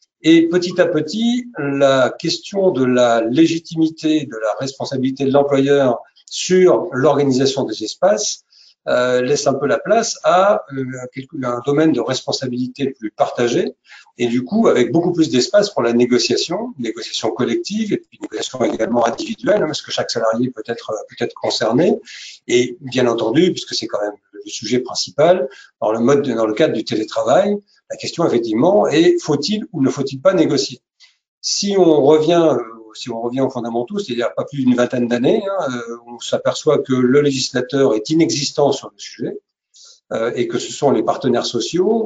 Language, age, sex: English, 50-69, male